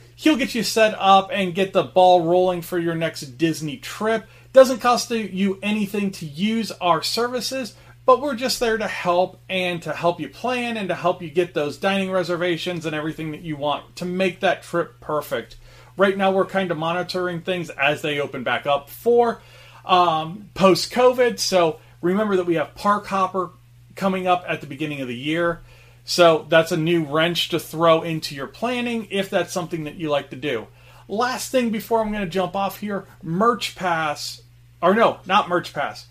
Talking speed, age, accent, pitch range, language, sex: 195 wpm, 30-49, American, 155-205 Hz, English, male